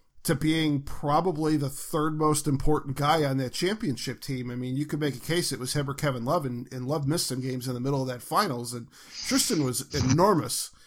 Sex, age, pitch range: male, 40-59, 135-160 Hz